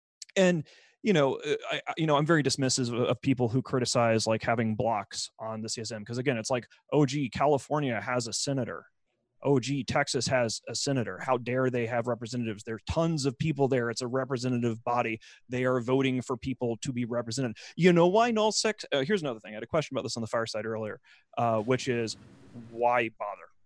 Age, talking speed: 30-49, 210 wpm